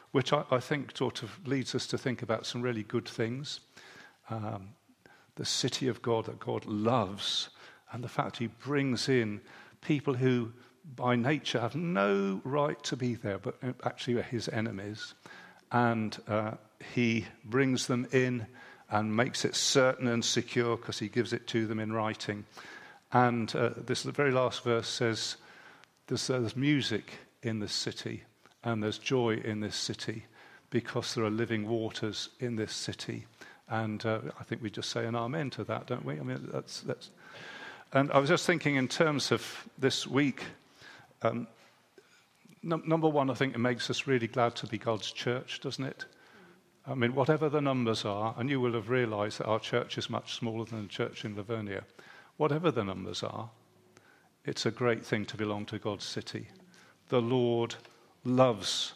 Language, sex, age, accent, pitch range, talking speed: English, male, 50-69, British, 110-130 Hz, 175 wpm